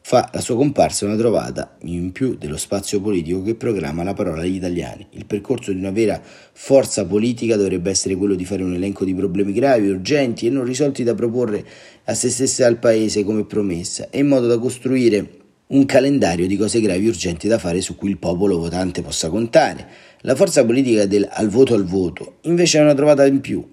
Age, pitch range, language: 40-59, 95-120 Hz, Italian